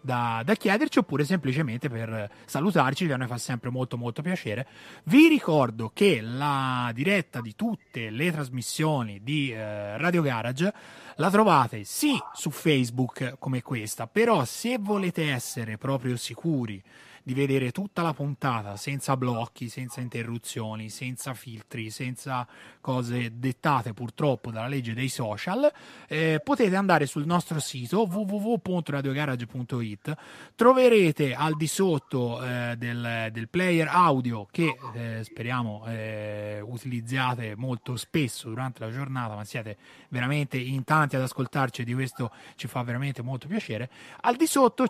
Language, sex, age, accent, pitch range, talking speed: Italian, male, 30-49, native, 120-170 Hz, 140 wpm